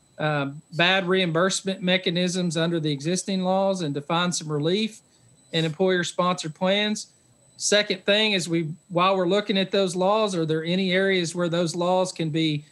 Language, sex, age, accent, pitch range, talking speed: English, male, 40-59, American, 160-200 Hz, 165 wpm